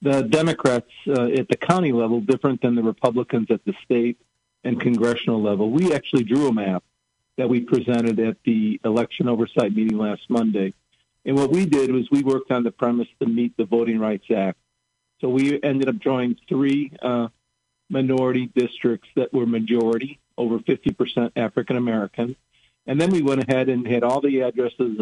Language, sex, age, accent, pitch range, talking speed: English, male, 50-69, American, 115-135 Hz, 175 wpm